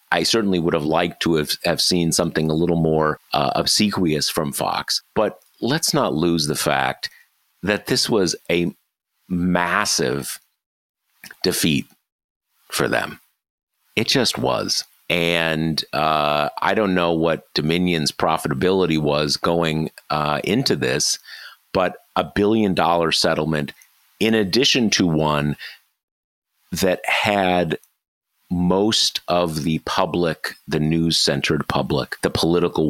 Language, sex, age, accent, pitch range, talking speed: English, male, 50-69, American, 75-90 Hz, 120 wpm